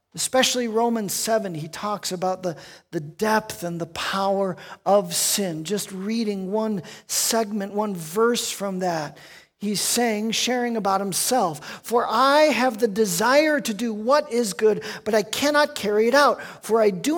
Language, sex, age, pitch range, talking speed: English, male, 40-59, 185-235 Hz, 160 wpm